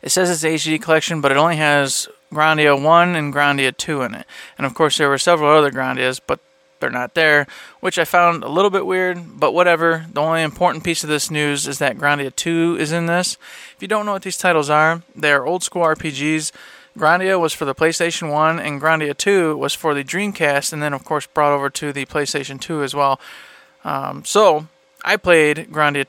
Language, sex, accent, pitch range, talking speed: English, male, American, 145-165 Hz, 215 wpm